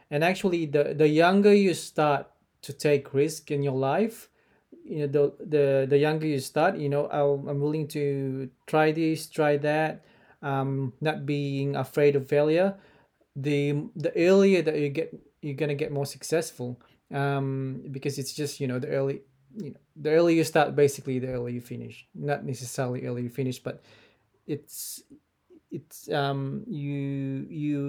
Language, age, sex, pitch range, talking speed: English, 20-39, male, 130-150 Hz, 170 wpm